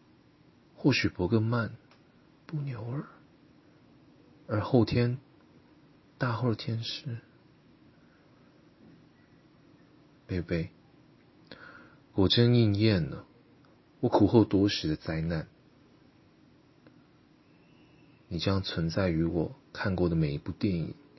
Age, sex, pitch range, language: 30-49, male, 80-110 Hz, Chinese